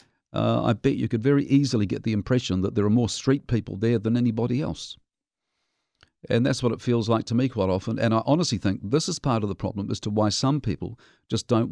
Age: 50-69